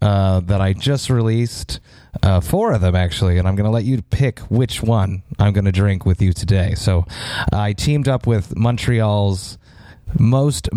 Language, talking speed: English, 185 wpm